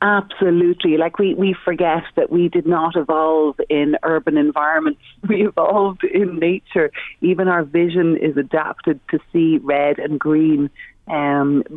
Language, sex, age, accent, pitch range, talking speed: English, female, 30-49, Irish, 150-190 Hz, 145 wpm